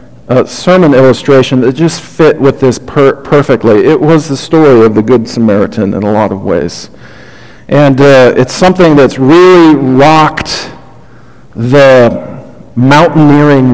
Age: 50-69